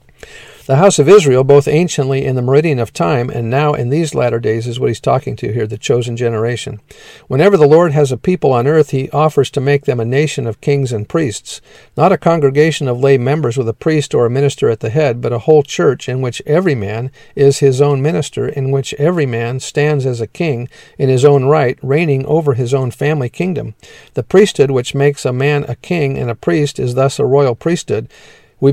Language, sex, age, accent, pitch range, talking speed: English, male, 50-69, American, 125-150 Hz, 225 wpm